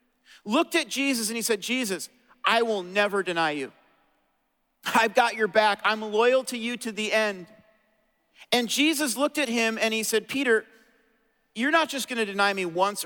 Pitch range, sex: 190-250 Hz, male